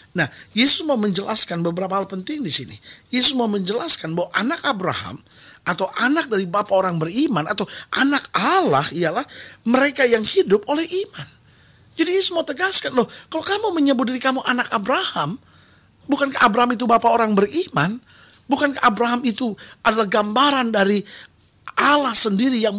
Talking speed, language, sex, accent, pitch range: 150 wpm, Indonesian, male, native, 230-280 Hz